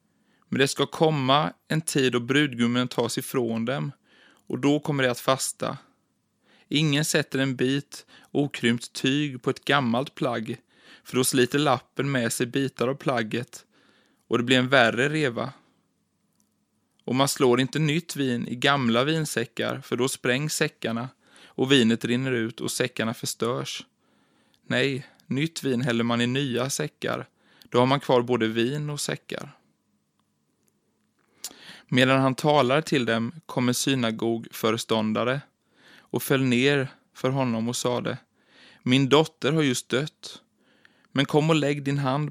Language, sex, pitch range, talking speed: Swedish, male, 120-140 Hz, 150 wpm